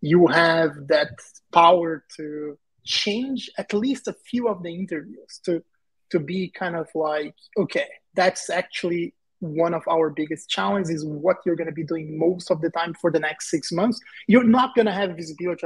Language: English